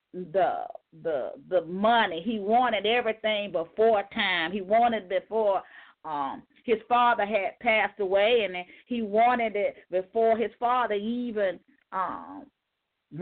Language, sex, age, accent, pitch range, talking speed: English, female, 40-59, American, 220-275 Hz, 125 wpm